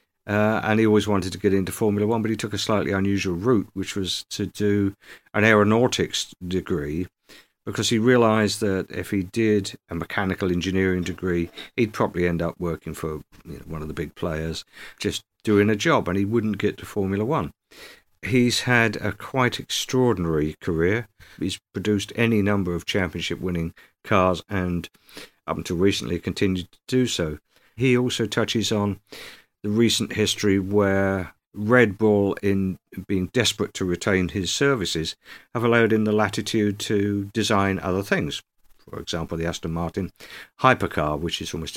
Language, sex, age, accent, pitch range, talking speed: English, male, 50-69, British, 90-110 Hz, 160 wpm